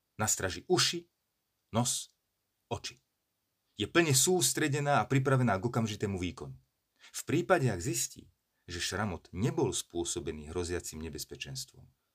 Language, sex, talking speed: Slovak, male, 110 wpm